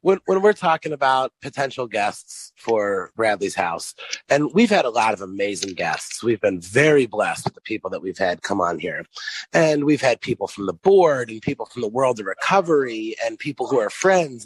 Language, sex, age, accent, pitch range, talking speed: English, male, 30-49, American, 130-215 Hz, 205 wpm